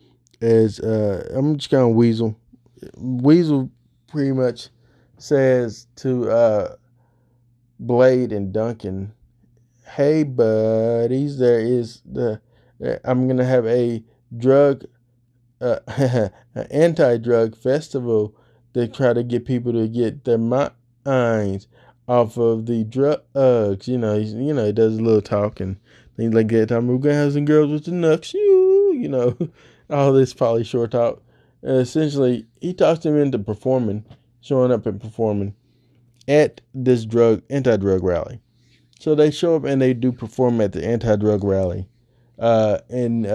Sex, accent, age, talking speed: male, American, 20-39, 145 wpm